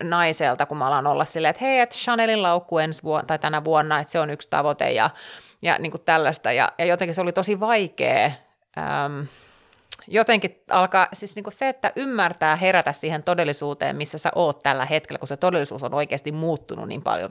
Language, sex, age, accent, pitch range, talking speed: Finnish, female, 30-49, native, 155-225 Hz, 195 wpm